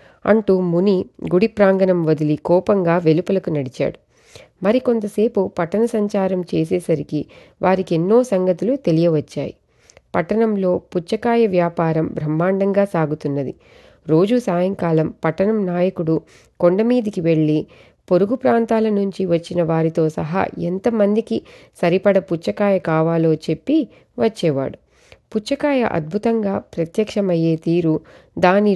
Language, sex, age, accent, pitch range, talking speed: Telugu, female, 30-49, native, 165-205 Hz, 90 wpm